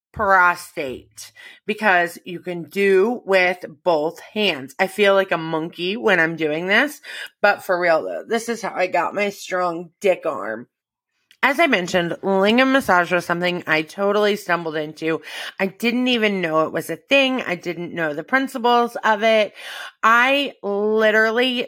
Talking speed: 160 wpm